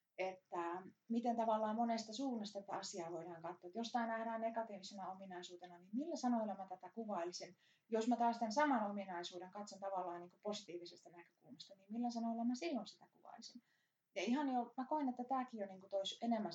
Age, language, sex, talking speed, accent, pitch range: 30-49, Finnish, female, 180 wpm, native, 180-240 Hz